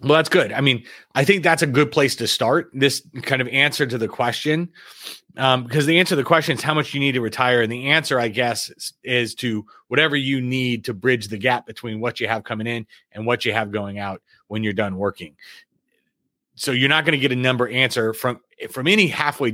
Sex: male